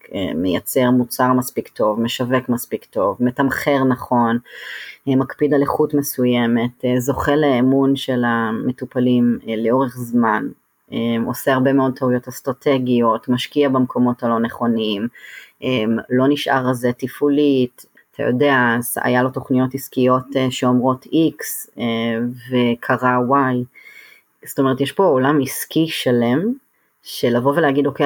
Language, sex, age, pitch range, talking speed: Hebrew, female, 30-49, 120-140 Hz, 110 wpm